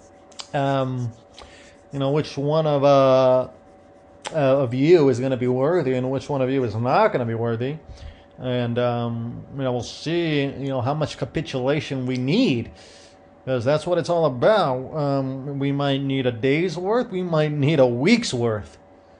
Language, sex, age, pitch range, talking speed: English, male, 30-49, 110-150 Hz, 180 wpm